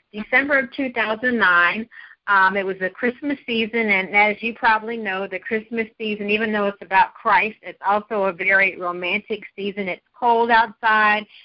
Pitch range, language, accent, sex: 195-230 Hz, English, American, female